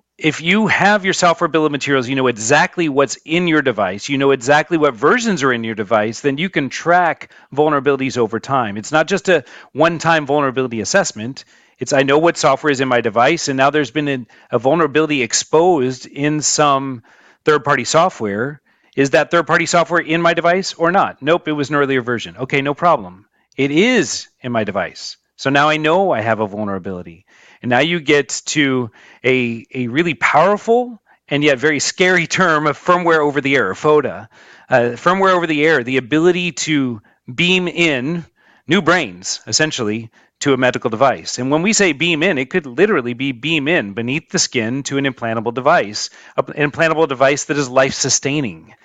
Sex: male